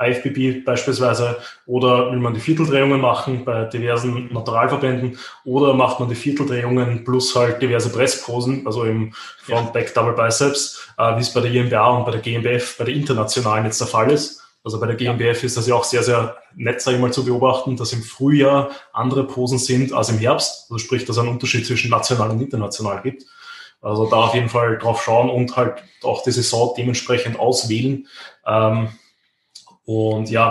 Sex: male